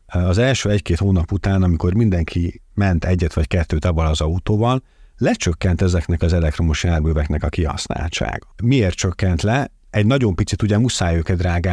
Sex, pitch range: male, 85-100 Hz